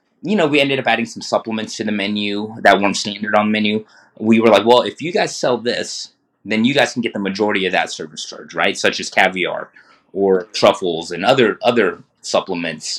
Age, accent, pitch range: 20-39, American, 105-125 Hz